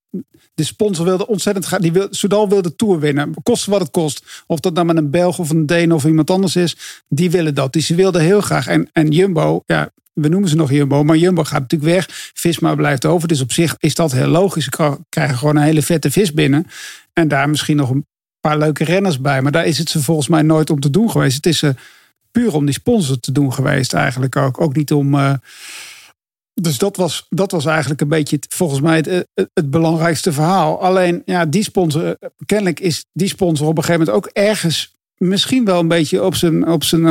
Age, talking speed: 50-69, 230 wpm